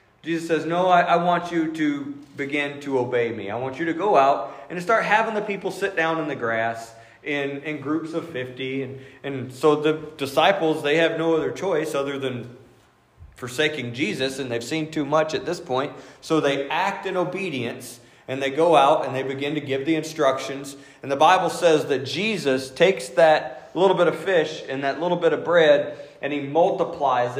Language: English